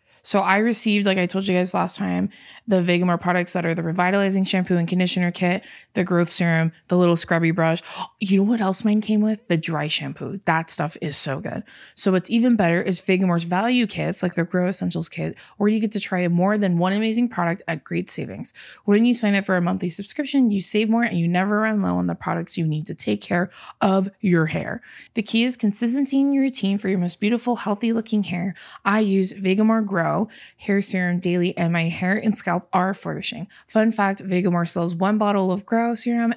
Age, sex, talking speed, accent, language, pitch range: 20-39, female, 220 wpm, American, English, 175-210 Hz